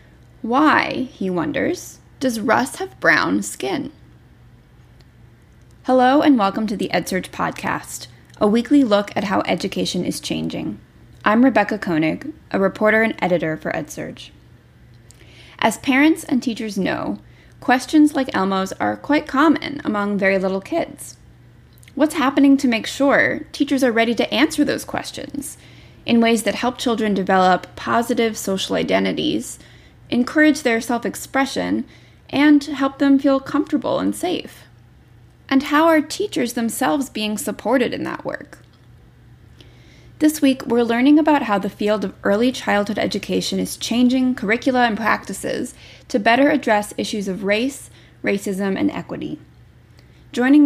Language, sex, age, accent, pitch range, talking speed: English, female, 20-39, American, 205-280 Hz, 135 wpm